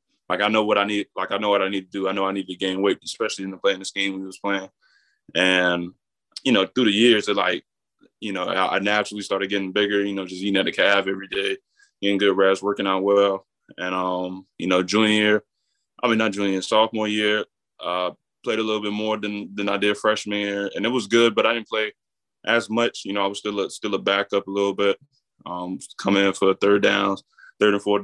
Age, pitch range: 20-39, 95-105 Hz